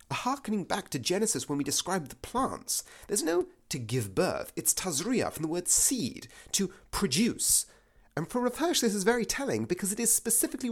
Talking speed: 185 wpm